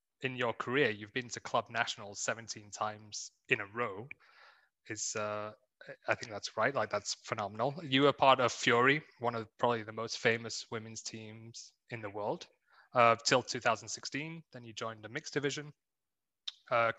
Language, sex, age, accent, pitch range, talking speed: English, male, 20-39, British, 110-130 Hz, 175 wpm